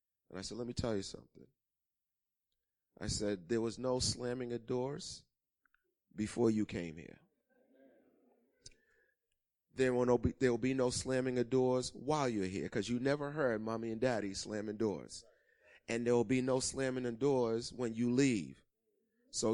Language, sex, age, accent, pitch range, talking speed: English, male, 30-49, American, 115-135 Hz, 160 wpm